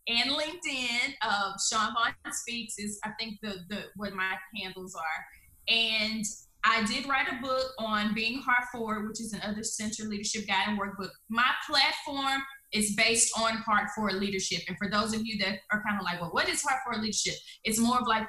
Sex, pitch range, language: female, 200-235 Hz, English